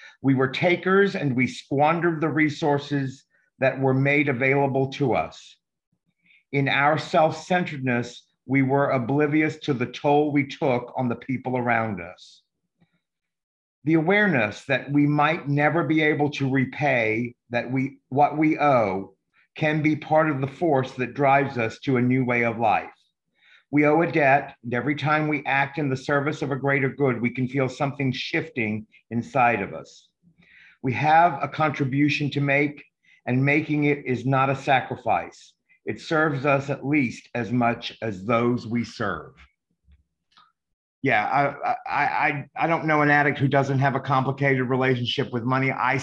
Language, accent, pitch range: English, American, 130-150 Hz